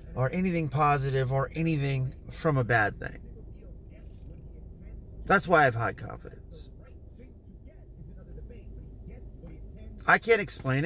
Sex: male